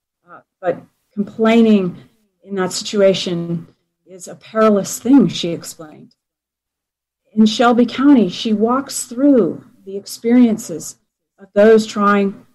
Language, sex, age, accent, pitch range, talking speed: English, female, 40-59, American, 180-225 Hz, 105 wpm